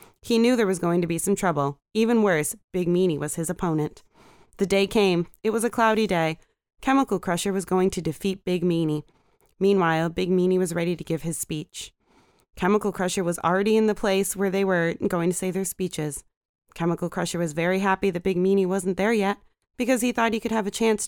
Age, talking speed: 20-39, 215 wpm